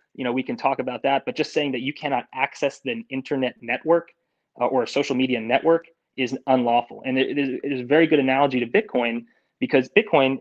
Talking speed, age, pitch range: 225 wpm, 20-39, 125-155 Hz